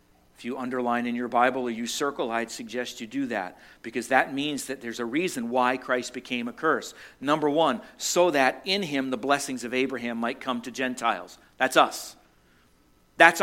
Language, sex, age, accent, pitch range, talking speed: English, male, 50-69, American, 125-200 Hz, 190 wpm